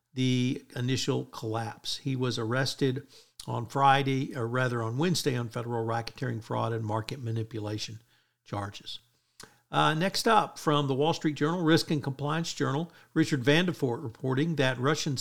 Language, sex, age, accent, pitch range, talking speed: English, male, 50-69, American, 120-150 Hz, 145 wpm